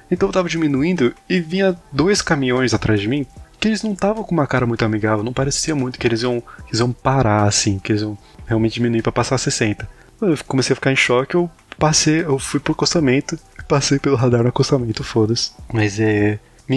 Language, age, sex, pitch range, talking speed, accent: Portuguese, 20-39, male, 110-135 Hz, 210 wpm, Brazilian